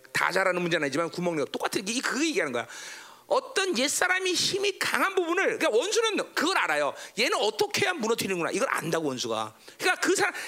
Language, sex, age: Korean, male, 40-59